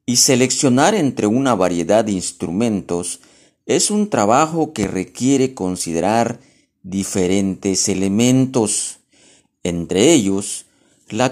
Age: 50-69